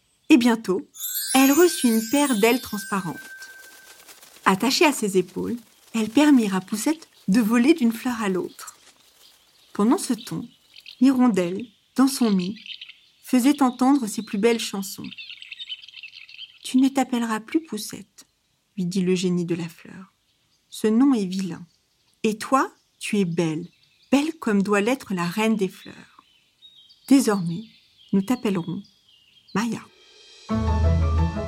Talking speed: 130 wpm